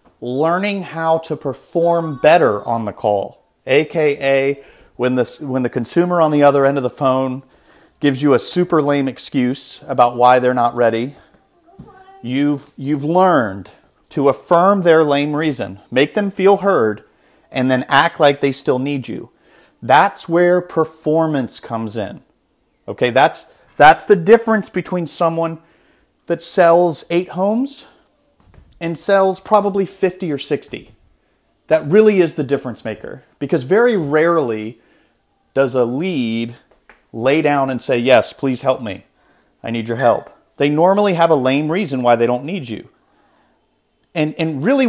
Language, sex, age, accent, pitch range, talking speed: English, male, 40-59, American, 130-180 Hz, 150 wpm